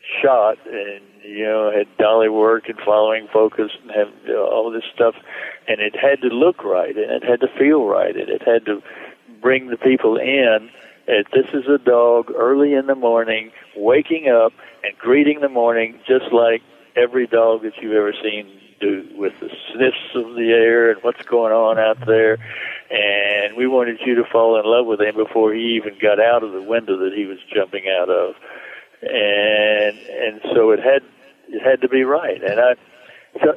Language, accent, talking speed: English, American, 195 wpm